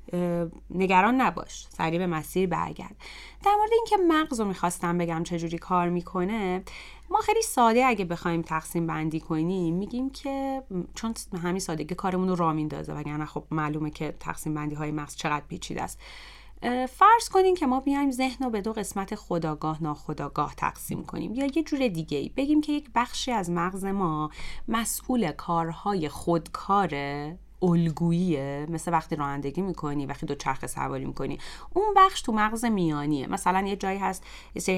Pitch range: 160-235 Hz